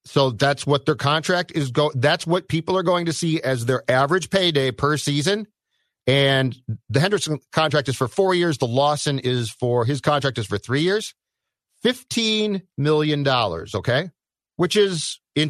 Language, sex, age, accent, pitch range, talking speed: English, male, 50-69, American, 130-175 Hz, 170 wpm